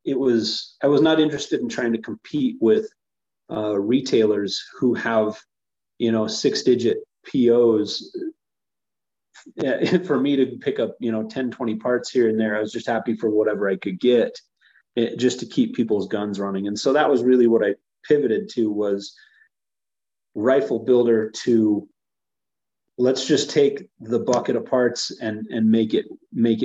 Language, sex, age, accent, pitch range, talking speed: English, male, 30-49, American, 110-130 Hz, 165 wpm